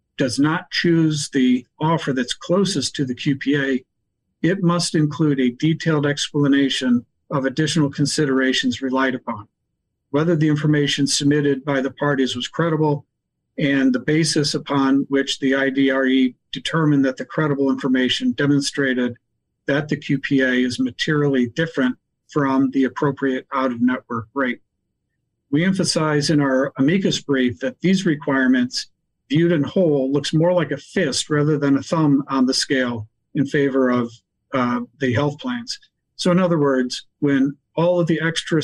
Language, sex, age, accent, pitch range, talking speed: English, male, 50-69, American, 130-150 Hz, 145 wpm